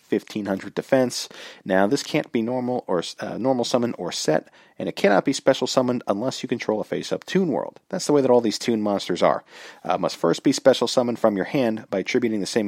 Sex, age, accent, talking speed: male, 40-59, American, 225 wpm